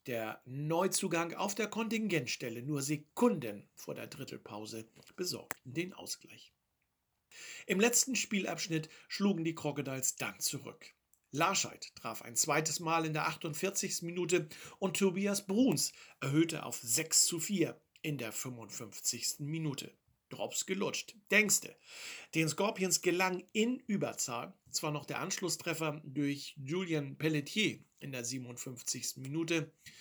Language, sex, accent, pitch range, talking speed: German, male, German, 135-175 Hz, 120 wpm